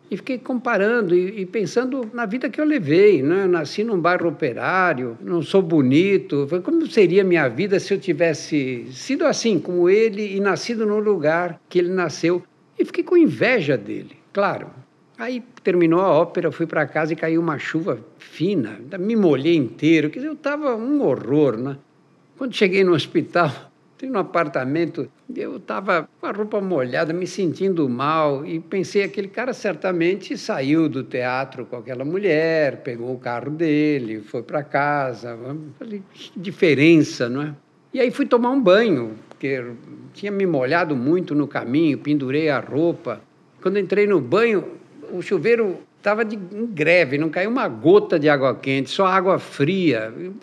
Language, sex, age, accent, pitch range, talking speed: Portuguese, male, 60-79, Brazilian, 150-210 Hz, 160 wpm